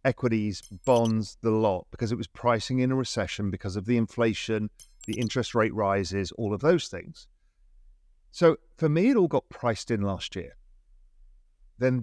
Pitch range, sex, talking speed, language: 105-135 Hz, male, 170 wpm, English